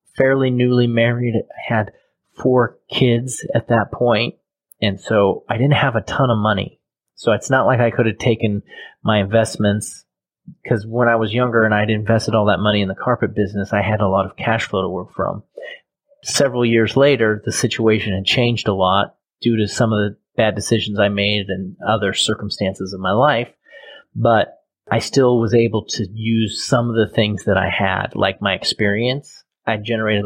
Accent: American